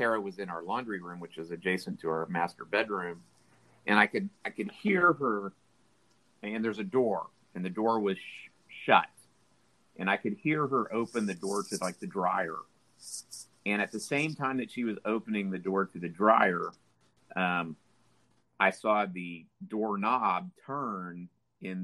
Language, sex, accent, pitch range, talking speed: English, male, American, 90-110 Hz, 170 wpm